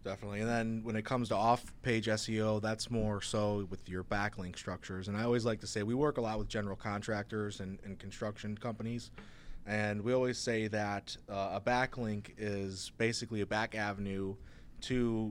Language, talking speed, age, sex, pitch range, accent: English, 185 wpm, 20-39, male, 100-115 Hz, American